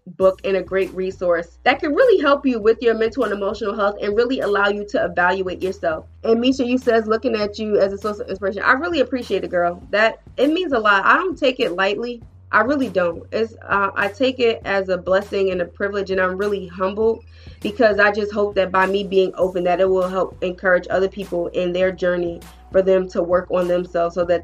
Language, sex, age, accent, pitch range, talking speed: English, female, 30-49, American, 190-250 Hz, 230 wpm